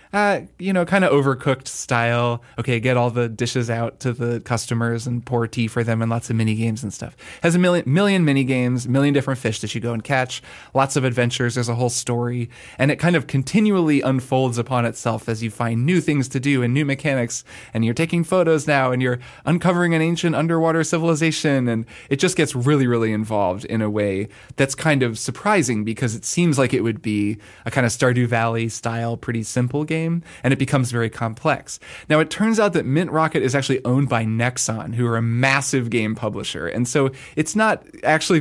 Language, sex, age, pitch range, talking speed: English, male, 20-39, 115-145 Hz, 215 wpm